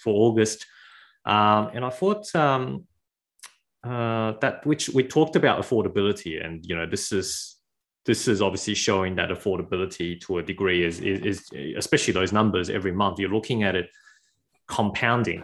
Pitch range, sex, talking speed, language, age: 90-115 Hz, male, 160 wpm, English, 20-39